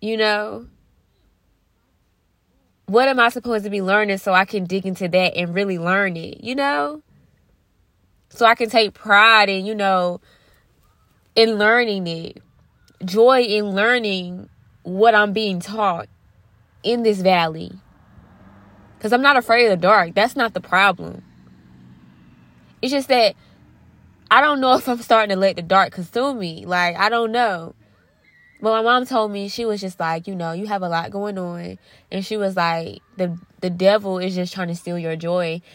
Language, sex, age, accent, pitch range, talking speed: English, female, 20-39, American, 170-225 Hz, 175 wpm